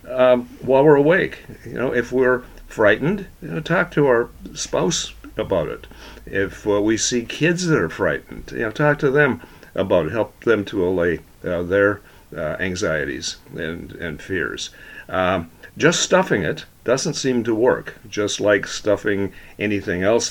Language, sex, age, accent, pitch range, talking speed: English, male, 50-69, American, 95-125 Hz, 165 wpm